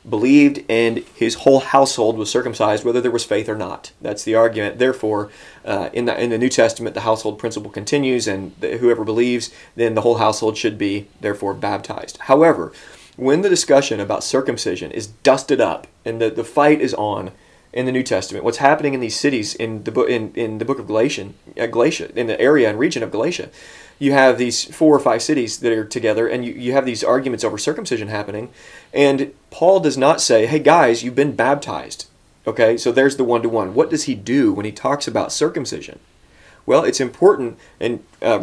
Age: 30-49